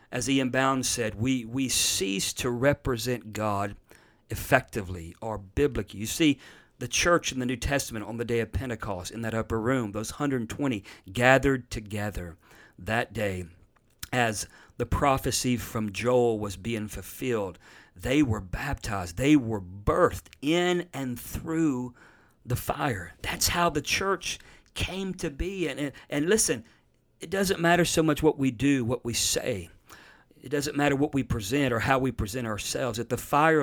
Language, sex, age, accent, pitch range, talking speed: English, male, 50-69, American, 110-145 Hz, 160 wpm